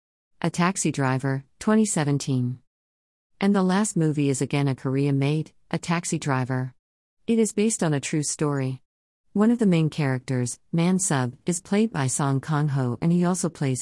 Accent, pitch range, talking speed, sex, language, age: American, 130-170 Hz, 165 wpm, female, English, 50-69